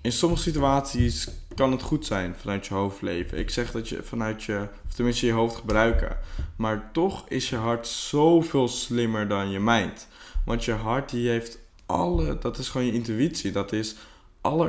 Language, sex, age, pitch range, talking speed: Dutch, male, 20-39, 105-135 Hz, 185 wpm